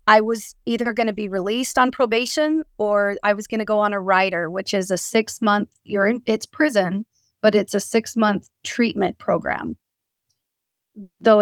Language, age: English, 30-49